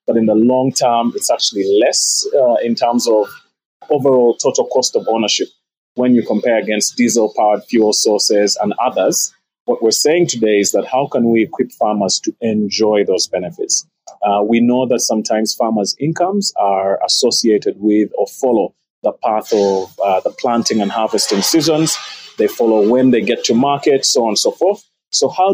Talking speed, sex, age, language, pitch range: 180 wpm, male, 30-49, English, 110-165 Hz